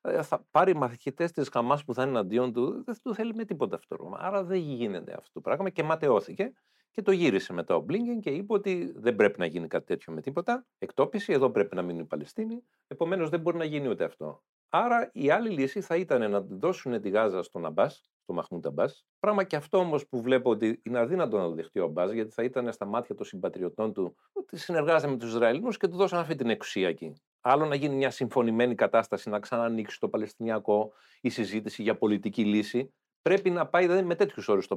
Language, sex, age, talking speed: Greek, male, 40-59, 215 wpm